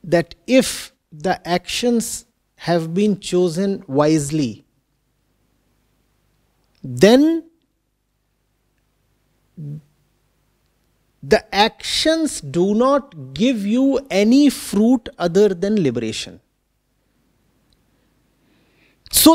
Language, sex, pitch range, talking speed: English, male, 175-255 Hz, 65 wpm